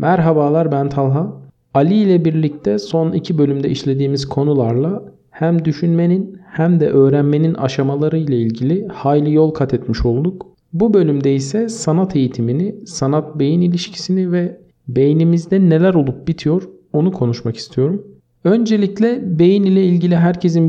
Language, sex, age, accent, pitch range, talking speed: Turkish, male, 50-69, native, 140-190 Hz, 130 wpm